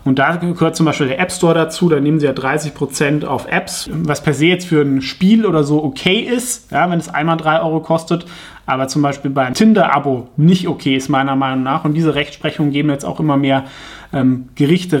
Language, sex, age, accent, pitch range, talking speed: German, male, 30-49, German, 130-155 Hz, 220 wpm